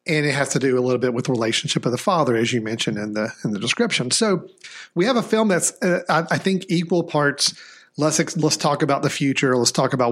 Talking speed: 260 wpm